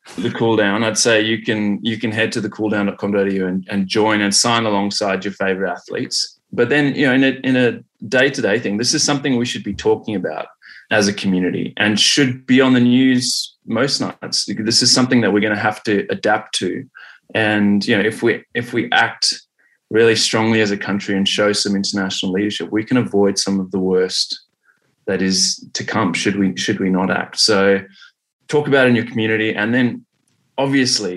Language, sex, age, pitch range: English, male, 20-39, 100-120 Hz